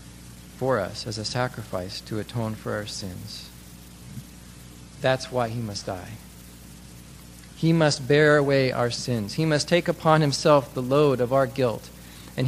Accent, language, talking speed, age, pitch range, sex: American, English, 155 wpm, 40-59, 100-160 Hz, male